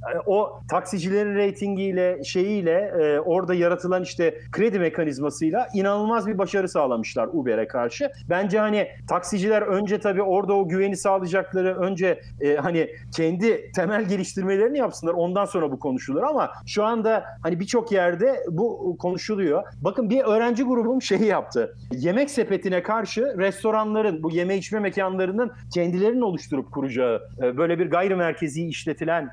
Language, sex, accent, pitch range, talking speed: Turkish, male, native, 165-205 Hz, 135 wpm